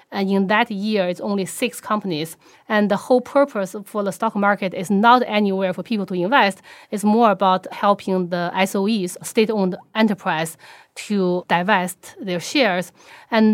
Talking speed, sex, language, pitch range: 160 wpm, female, English, 180-215 Hz